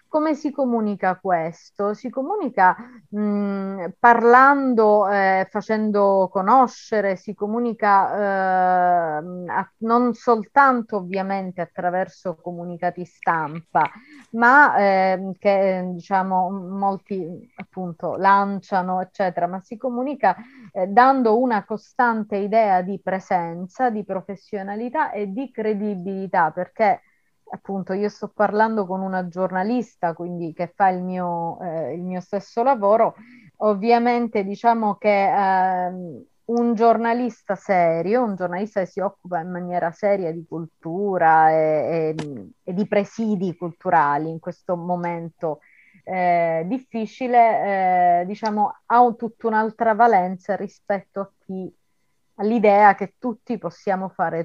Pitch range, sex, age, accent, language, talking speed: 180-225 Hz, female, 30-49, native, Italian, 115 wpm